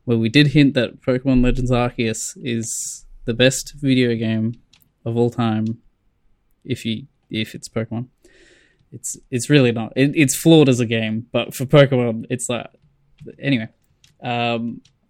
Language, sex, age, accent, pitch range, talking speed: English, male, 10-29, Australian, 115-135 Hz, 150 wpm